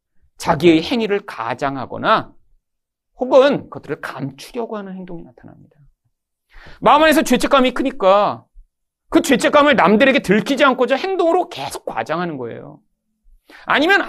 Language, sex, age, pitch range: Korean, male, 40-59, 130-215 Hz